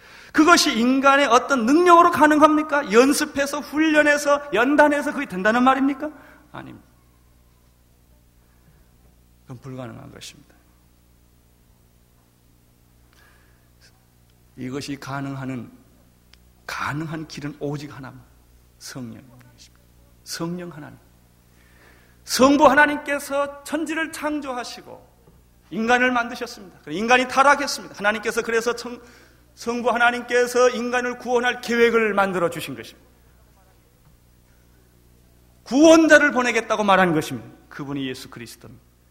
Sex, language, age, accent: male, Korean, 40-59, native